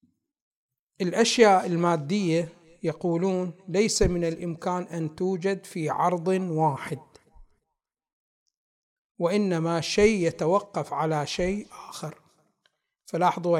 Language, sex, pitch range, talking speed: Arabic, male, 165-200 Hz, 80 wpm